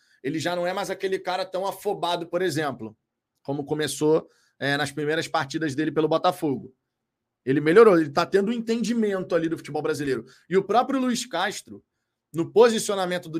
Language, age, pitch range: Portuguese, 20-39, 150-195 Hz